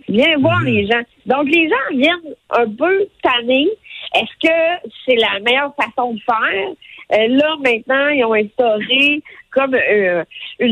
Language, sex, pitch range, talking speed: French, female, 220-275 Hz, 155 wpm